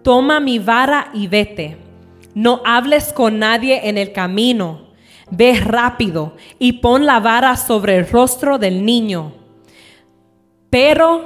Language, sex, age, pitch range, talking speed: English, female, 20-39, 215-280 Hz, 130 wpm